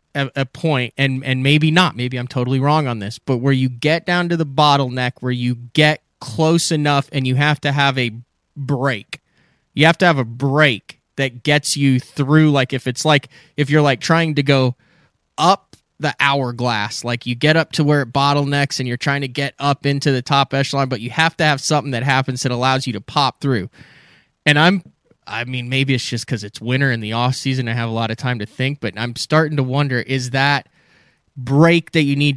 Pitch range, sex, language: 120-150 Hz, male, English